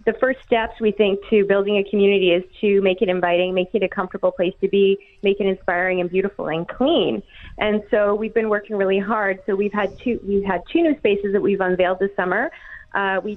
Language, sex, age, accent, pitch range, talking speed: English, female, 30-49, American, 190-225 Hz, 230 wpm